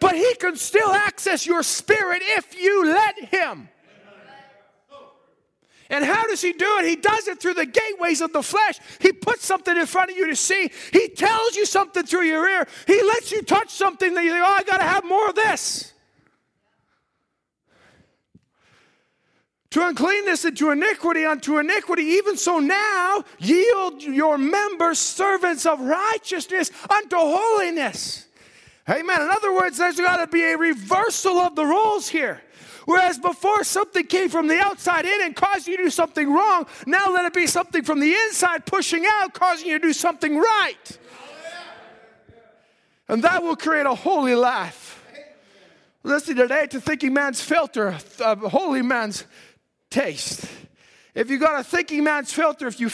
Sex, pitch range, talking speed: male, 300-385 Hz, 165 wpm